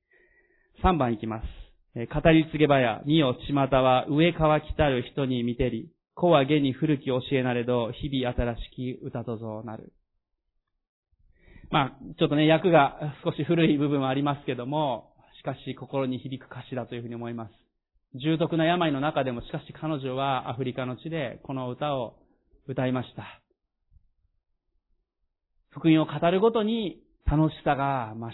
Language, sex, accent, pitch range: Japanese, male, native, 115-150 Hz